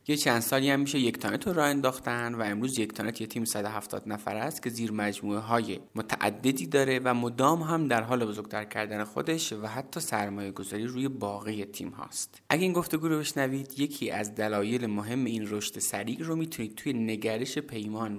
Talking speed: 185 wpm